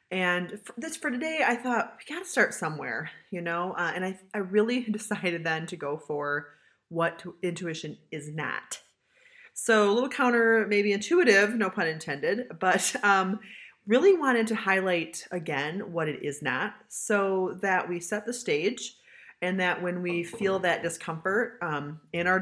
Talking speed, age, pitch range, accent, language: 175 wpm, 30-49, 155-215 Hz, American, English